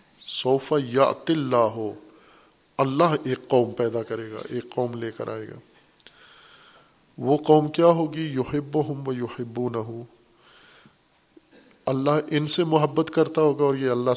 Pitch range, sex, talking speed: 125-150 Hz, male, 130 wpm